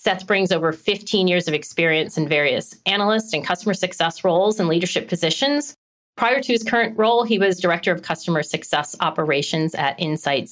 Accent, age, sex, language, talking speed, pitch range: American, 40-59, female, English, 175 wpm, 170-220 Hz